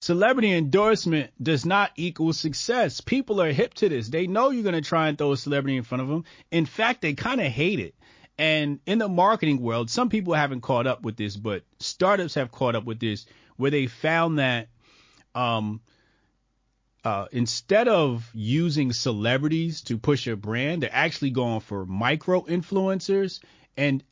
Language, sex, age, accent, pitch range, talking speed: English, male, 30-49, American, 110-155 Hz, 180 wpm